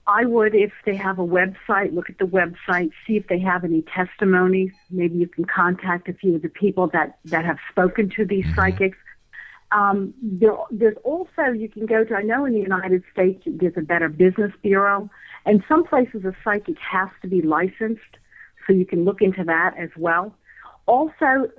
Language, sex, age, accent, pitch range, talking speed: English, female, 50-69, American, 180-220 Hz, 190 wpm